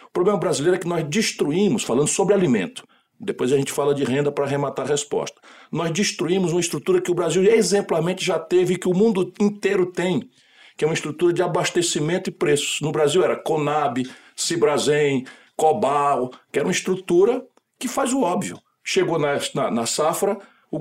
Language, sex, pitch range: Portuguese, male, 150-205 Hz